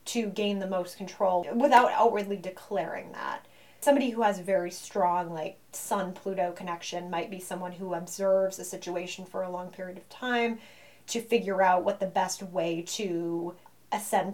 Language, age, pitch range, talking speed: English, 20-39, 180-210 Hz, 165 wpm